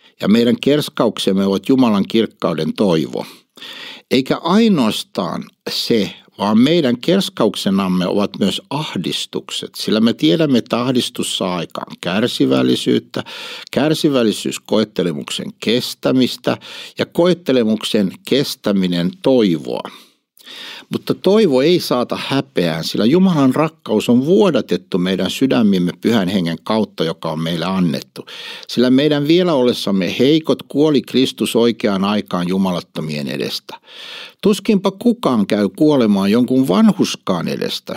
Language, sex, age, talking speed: Finnish, male, 60-79, 105 wpm